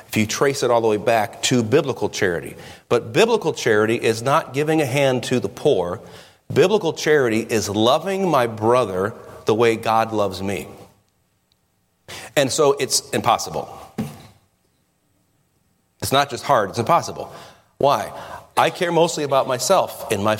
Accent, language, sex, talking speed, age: American, English, male, 150 wpm, 40-59